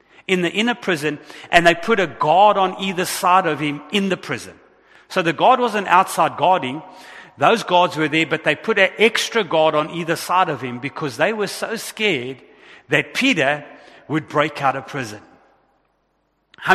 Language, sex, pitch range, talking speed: English, male, 150-195 Hz, 185 wpm